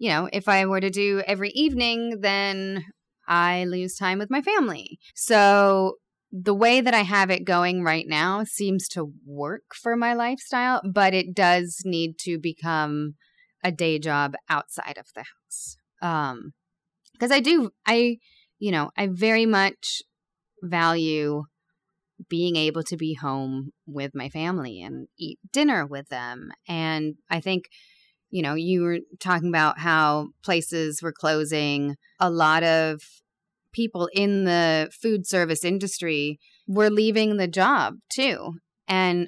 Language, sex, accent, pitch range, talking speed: English, female, American, 160-205 Hz, 150 wpm